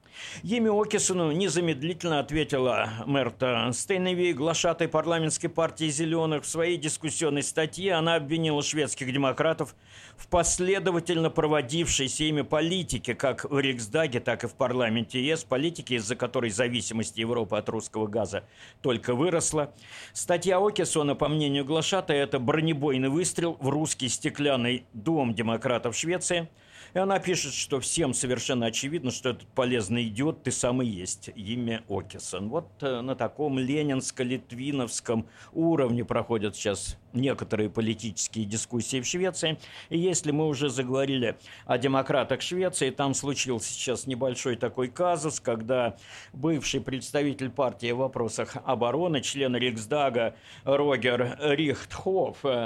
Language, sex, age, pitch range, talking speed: Russian, male, 50-69, 120-160 Hz, 125 wpm